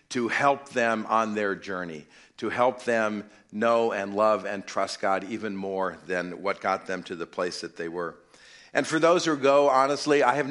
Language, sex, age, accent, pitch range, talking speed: English, male, 50-69, American, 95-130 Hz, 200 wpm